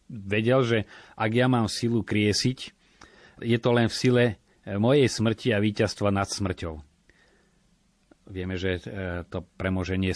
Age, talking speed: 30-49, 130 wpm